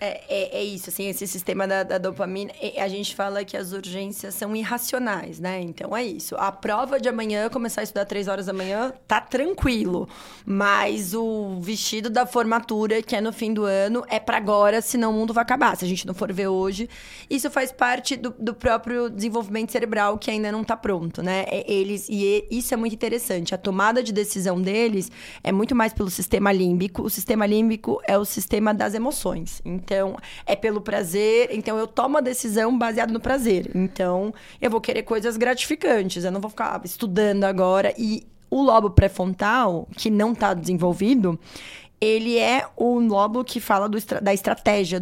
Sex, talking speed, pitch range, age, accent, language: female, 190 wpm, 195-235 Hz, 20-39, Brazilian, Portuguese